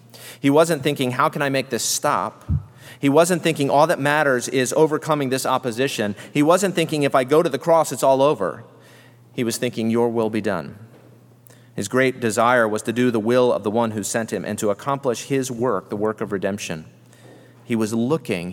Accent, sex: American, male